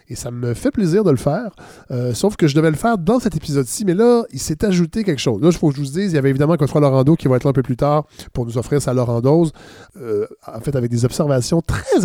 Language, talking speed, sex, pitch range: French, 290 wpm, male, 125-165 Hz